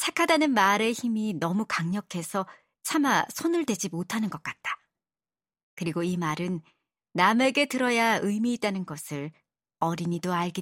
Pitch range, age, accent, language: 170-235 Hz, 40-59, native, Korean